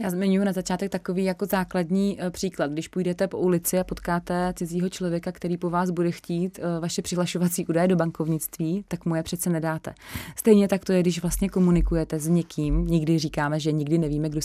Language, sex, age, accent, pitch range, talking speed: Czech, female, 30-49, native, 150-175 Hz, 185 wpm